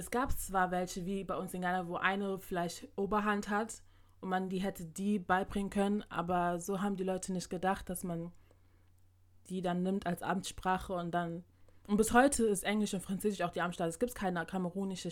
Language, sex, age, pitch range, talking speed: German, female, 20-39, 160-195 Hz, 200 wpm